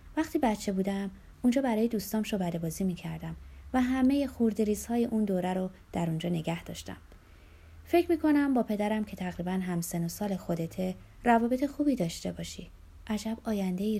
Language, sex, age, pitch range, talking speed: Persian, female, 30-49, 170-230 Hz, 160 wpm